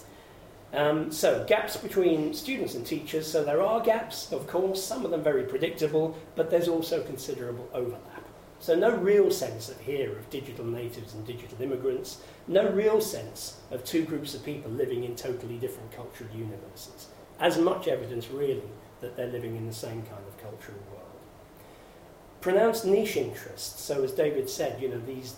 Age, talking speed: 40-59, 175 wpm